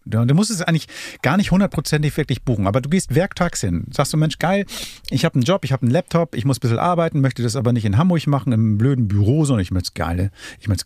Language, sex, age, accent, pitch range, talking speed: German, male, 40-59, German, 110-145 Hz, 250 wpm